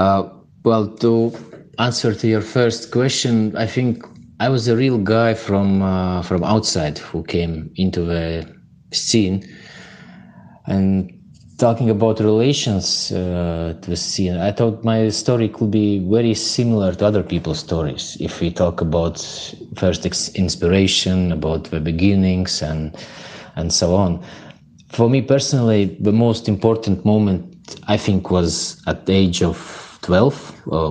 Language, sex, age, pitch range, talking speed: English, male, 30-49, 85-110 Hz, 140 wpm